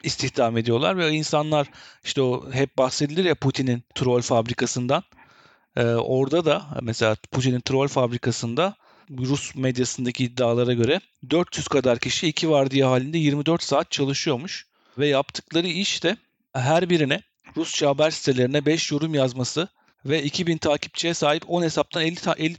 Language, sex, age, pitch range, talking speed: Turkish, male, 40-59, 130-155 Hz, 145 wpm